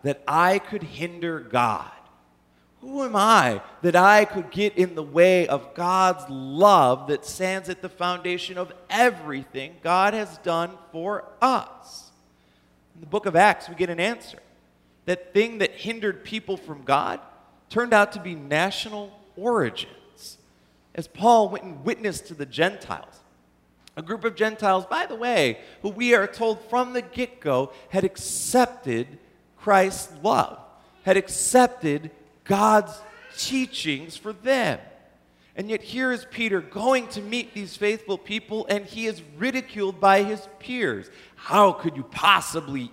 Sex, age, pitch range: male, 40-59, 150-210 Hz